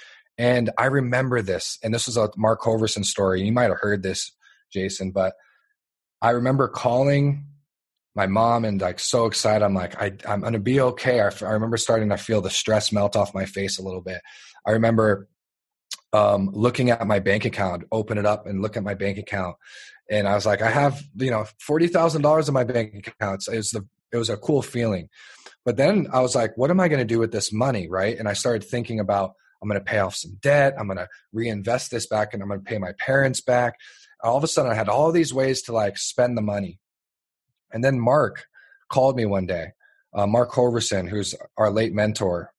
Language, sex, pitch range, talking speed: English, male, 100-130 Hz, 220 wpm